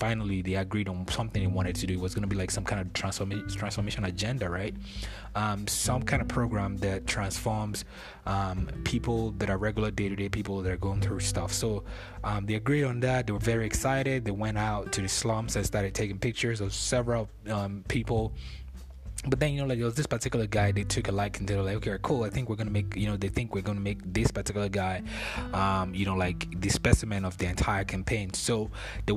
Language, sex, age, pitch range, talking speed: English, male, 20-39, 100-115 Hz, 225 wpm